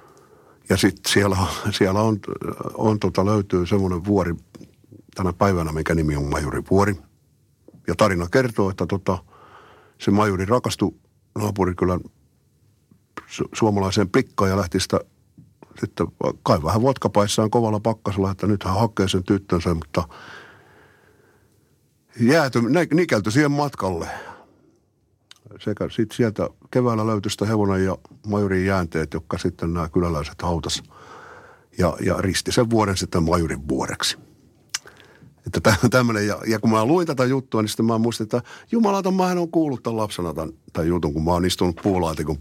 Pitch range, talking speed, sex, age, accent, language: 90-125 Hz, 140 wpm, male, 50-69, native, Finnish